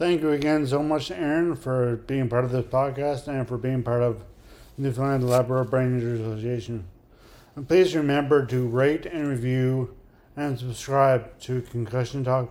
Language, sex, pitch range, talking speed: English, male, 120-140 Hz, 165 wpm